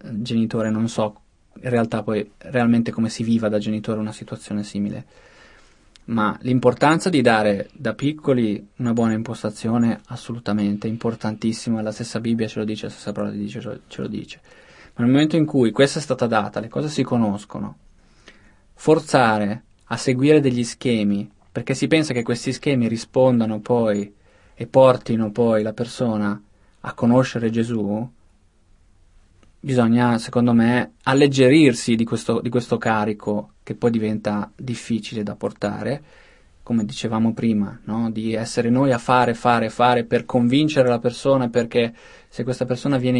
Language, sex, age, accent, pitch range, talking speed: Italian, male, 20-39, native, 110-125 Hz, 145 wpm